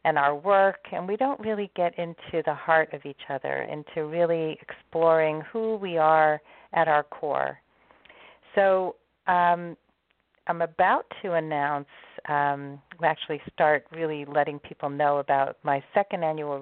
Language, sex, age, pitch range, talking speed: English, female, 40-59, 150-180 Hz, 145 wpm